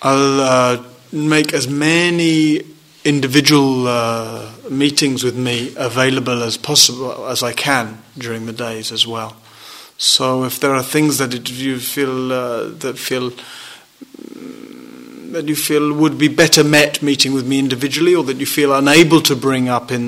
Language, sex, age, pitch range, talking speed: English, male, 30-49, 125-150 Hz, 155 wpm